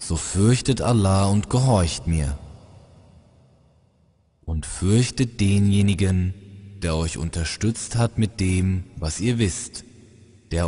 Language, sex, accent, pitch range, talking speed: German, male, German, 90-115 Hz, 105 wpm